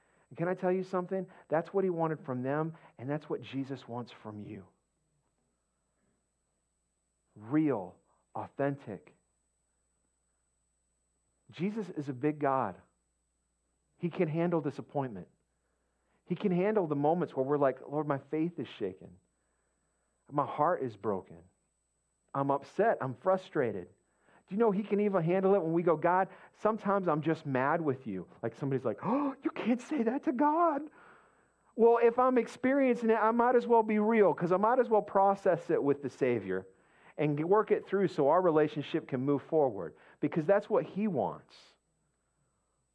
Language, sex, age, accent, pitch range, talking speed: English, male, 40-59, American, 125-195 Hz, 160 wpm